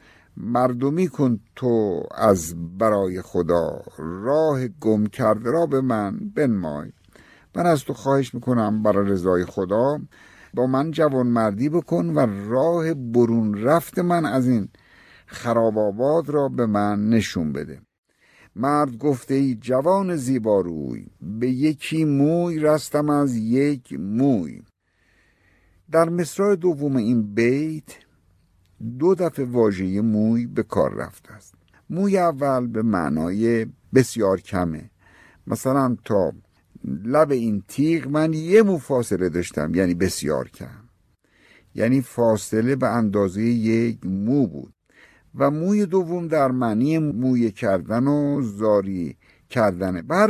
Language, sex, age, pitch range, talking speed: Persian, male, 60-79, 105-150 Hz, 120 wpm